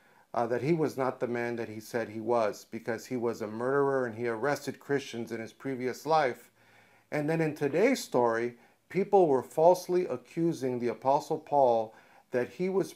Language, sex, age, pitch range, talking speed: English, male, 50-69, 120-155 Hz, 185 wpm